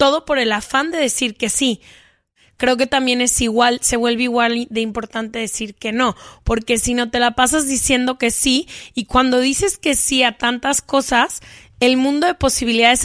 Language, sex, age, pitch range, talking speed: Spanish, female, 20-39, 235-270 Hz, 195 wpm